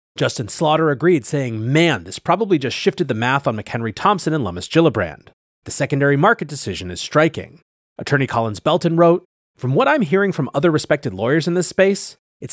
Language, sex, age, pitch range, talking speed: English, male, 30-49, 120-175 Hz, 185 wpm